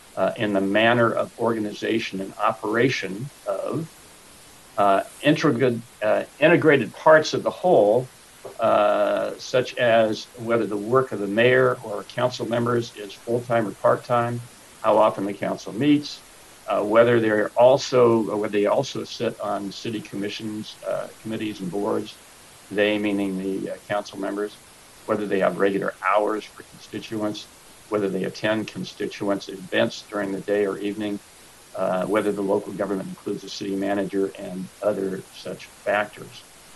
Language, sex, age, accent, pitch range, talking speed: English, male, 60-79, American, 100-115 Hz, 145 wpm